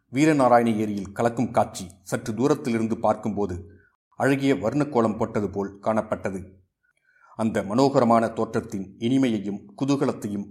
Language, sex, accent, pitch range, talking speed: Tamil, male, native, 100-130 Hz, 95 wpm